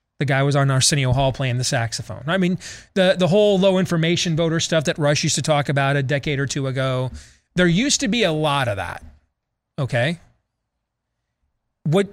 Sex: male